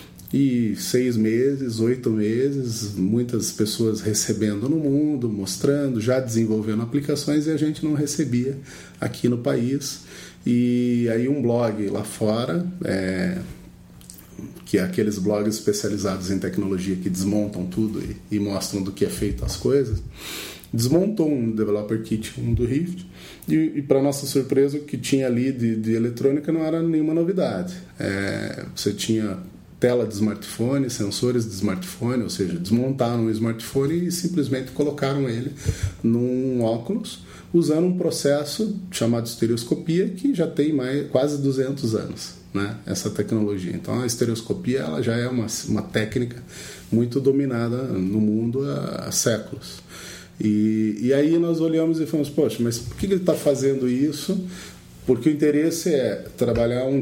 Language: Portuguese